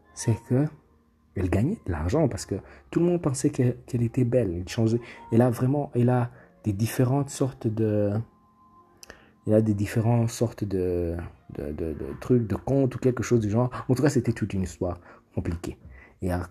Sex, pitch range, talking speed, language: male, 100-130 Hz, 195 wpm, French